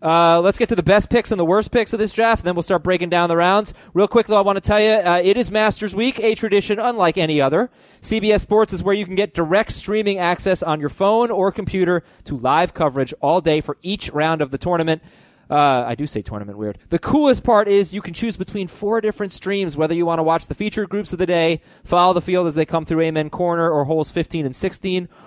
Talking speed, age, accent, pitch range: 255 wpm, 20-39, American, 140-190 Hz